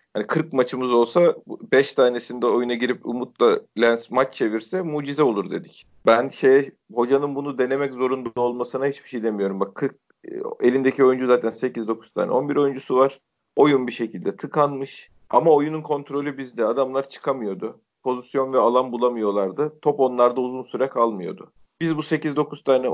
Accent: native